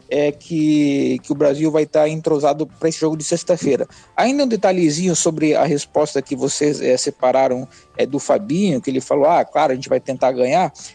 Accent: Brazilian